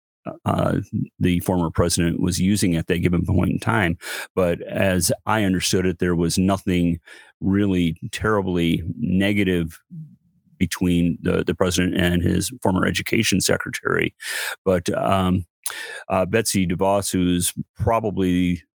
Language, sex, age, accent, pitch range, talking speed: English, male, 40-59, American, 85-95 Hz, 125 wpm